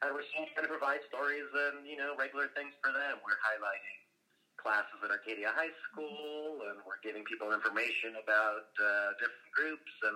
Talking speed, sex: 175 wpm, male